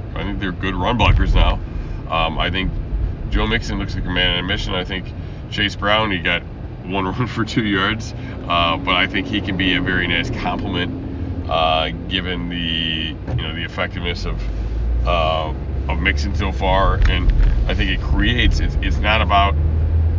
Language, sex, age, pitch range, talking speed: English, male, 30-49, 80-105 Hz, 185 wpm